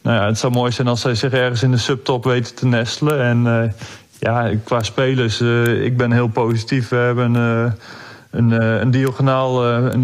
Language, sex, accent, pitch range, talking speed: Dutch, male, Dutch, 120-135 Hz, 210 wpm